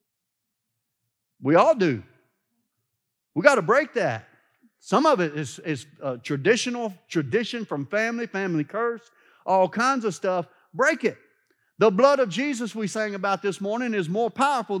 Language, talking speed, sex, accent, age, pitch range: English, 155 wpm, male, American, 50-69, 175-245 Hz